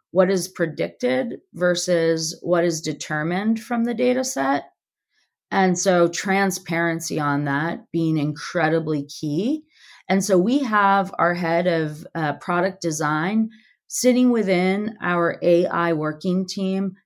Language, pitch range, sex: English, 160-195 Hz, female